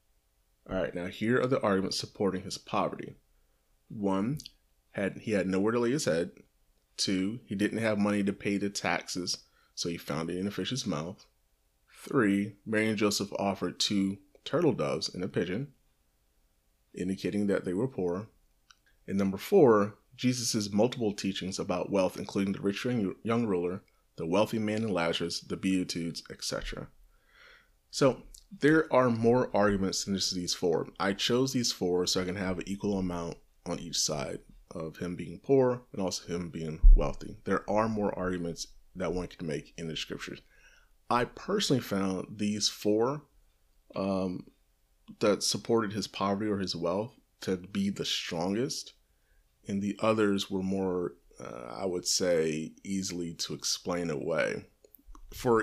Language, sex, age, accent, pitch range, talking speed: English, male, 30-49, American, 85-105 Hz, 160 wpm